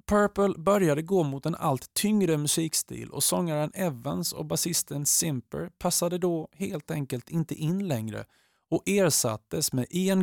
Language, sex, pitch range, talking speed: Swedish, male, 120-170 Hz, 145 wpm